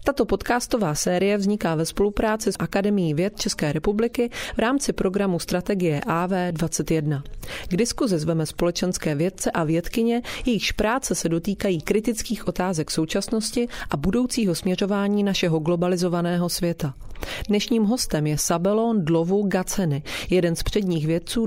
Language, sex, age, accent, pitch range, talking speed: Czech, female, 30-49, native, 165-210 Hz, 130 wpm